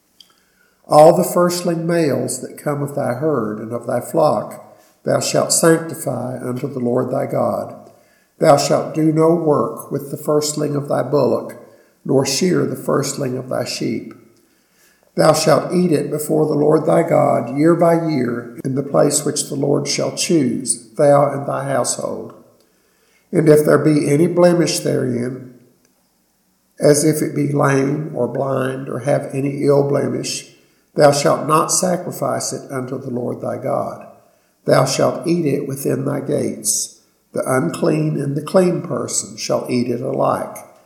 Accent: American